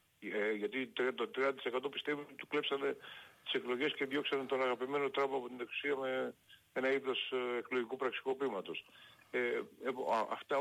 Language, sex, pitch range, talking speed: Greek, male, 110-150 Hz, 140 wpm